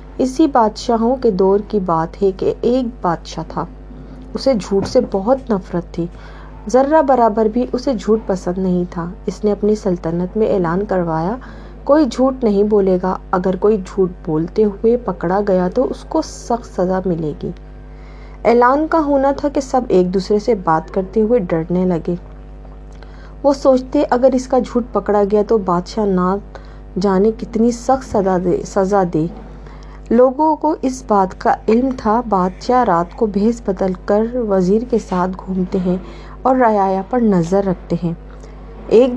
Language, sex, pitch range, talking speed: Urdu, female, 185-245 Hz, 160 wpm